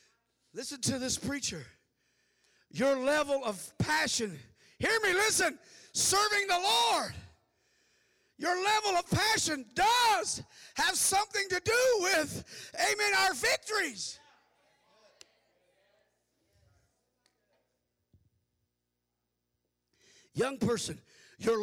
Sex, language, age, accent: male, English, 50-69, American